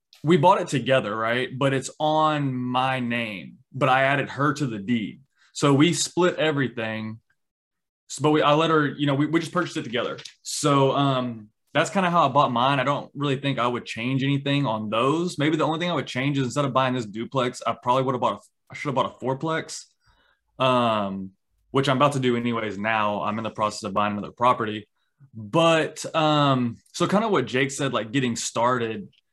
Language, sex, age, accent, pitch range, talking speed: English, male, 20-39, American, 120-145 Hz, 215 wpm